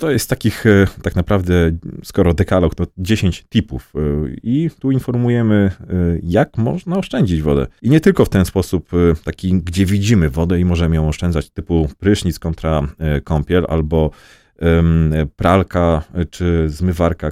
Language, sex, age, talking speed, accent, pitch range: Polish, male, 30-49, 135 wpm, native, 85-110 Hz